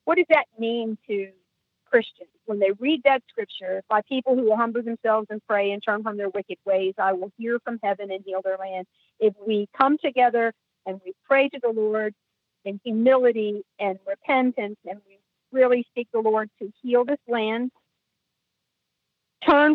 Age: 50-69